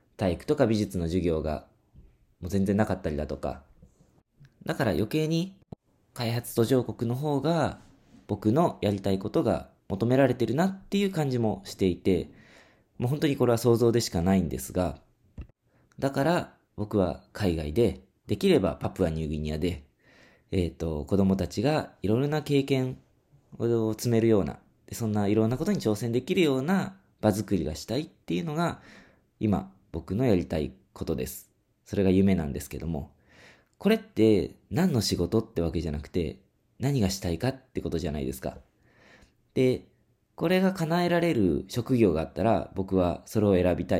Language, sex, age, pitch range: Japanese, male, 20-39, 85-130 Hz